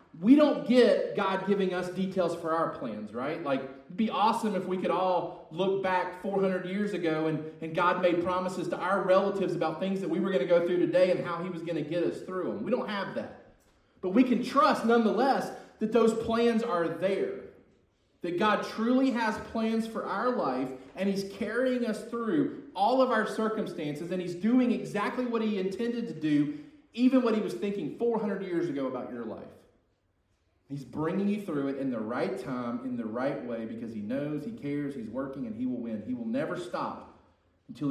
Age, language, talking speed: 30-49, English, 210 wpm